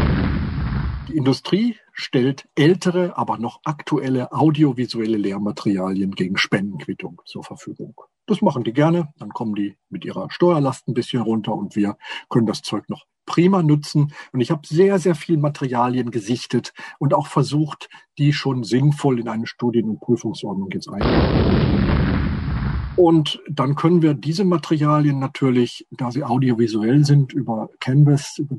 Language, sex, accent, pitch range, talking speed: German, male, German, 110-155 Hz, 140 wpm